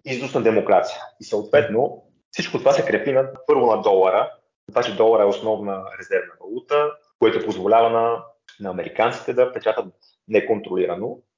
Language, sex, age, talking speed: Bulgarian, male, 30-49, 135 wpm